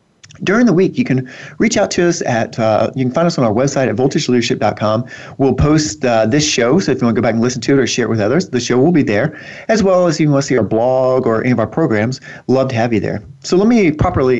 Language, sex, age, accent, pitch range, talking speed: English, male, 40-59, American, 110-140 Hz, 290 wpm